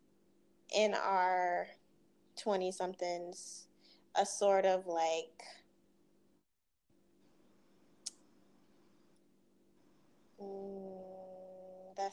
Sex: female